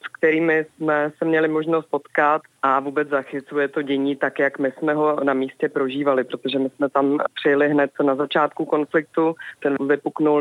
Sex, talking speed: female, 180 wpm